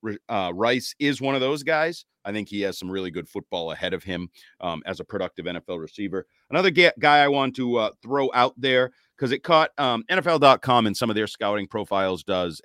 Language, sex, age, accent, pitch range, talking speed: English, male, 40-59, American, 105-135 Hz, 220 wpm